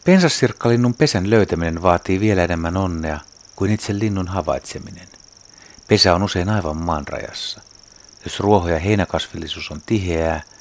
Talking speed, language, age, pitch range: 130 wpm, Finnish, 60-79, 85-105 Hz